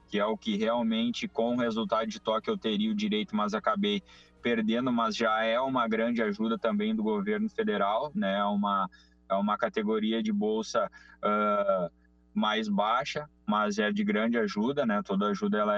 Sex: male